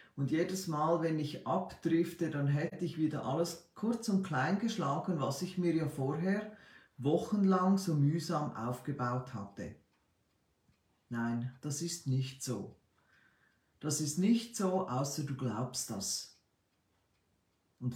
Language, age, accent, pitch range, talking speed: German, 50-69, Austrian, 130-180 Hz, 130 wpm